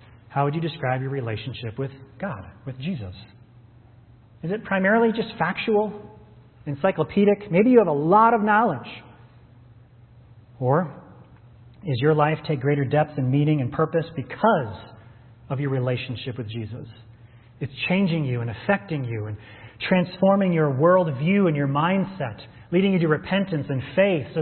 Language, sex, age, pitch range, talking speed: English, male, 30-49, 120-180 Hz, 145 wpm